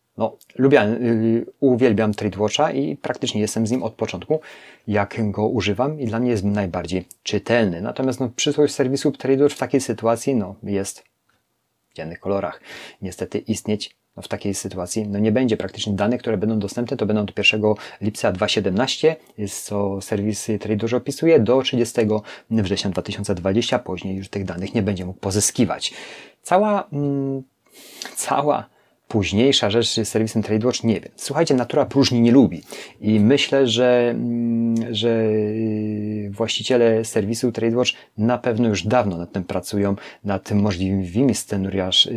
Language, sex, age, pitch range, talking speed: Polish, male, 30-49, 105-125 Hz, 150 wpm